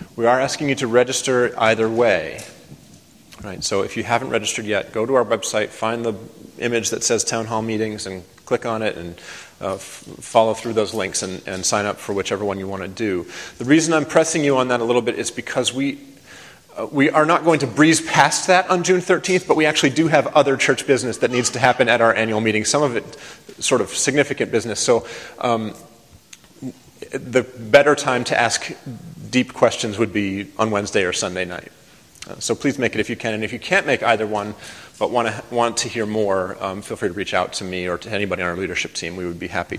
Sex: male